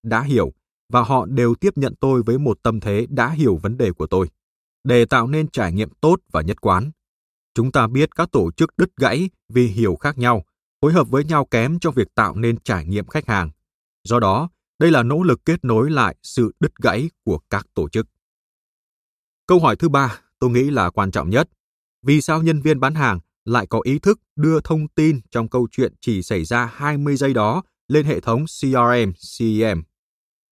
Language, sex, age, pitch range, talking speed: Vietnamese, male, 20-39, 105-140 Hz, 205 wpm